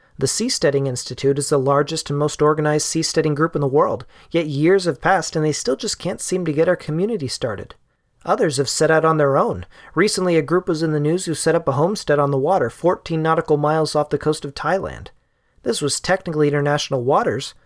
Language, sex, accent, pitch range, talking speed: English, male, American, 145-170 Hz, 220 wpm